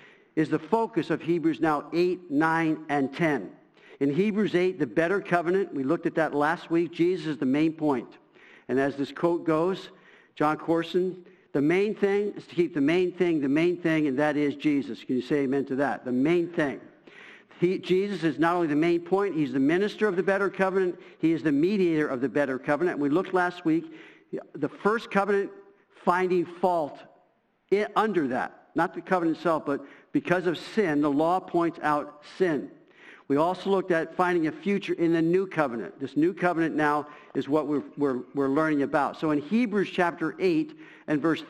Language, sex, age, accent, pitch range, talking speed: English, male, 60-79, American, 150-195 Hz, 190 wpm